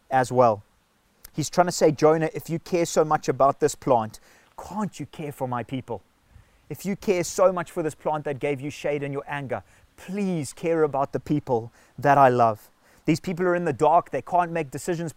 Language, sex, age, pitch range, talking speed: English, male, 30-49, 135-170 Hz, 215 wpm